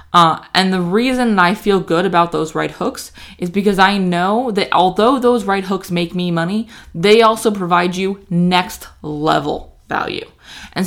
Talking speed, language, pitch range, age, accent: 170 wpm, English, 170-215 Hz, 20-39, American